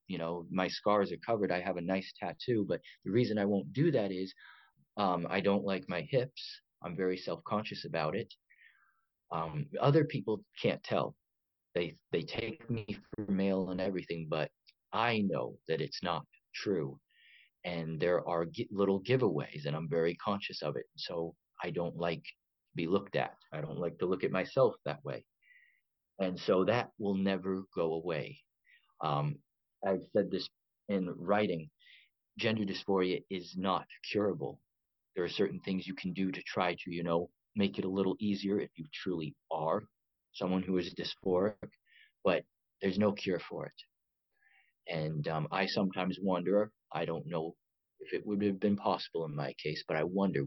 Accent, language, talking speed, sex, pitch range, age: American, English, 175 wpm, male, 85-105 Hz, 30-49